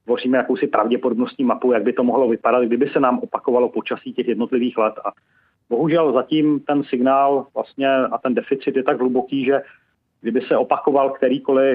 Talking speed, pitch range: 175 wpm, 115-130 Hz